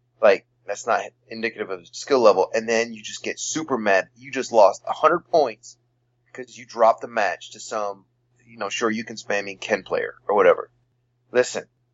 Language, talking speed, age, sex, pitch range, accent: English, 190 wpm, 30-49, male, 115-130 Hz, American